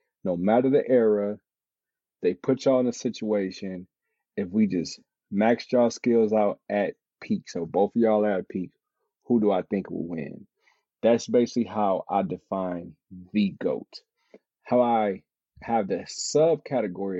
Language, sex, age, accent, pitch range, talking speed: English, male, 30-49, American, 95-120 Hz, 155 wpm